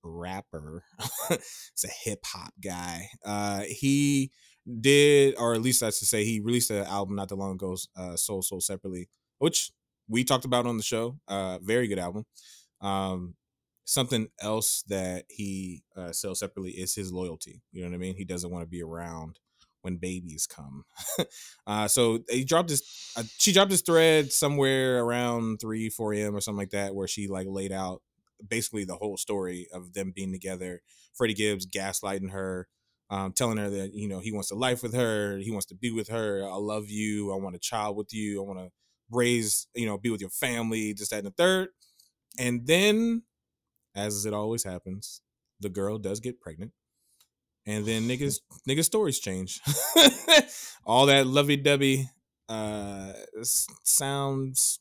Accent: American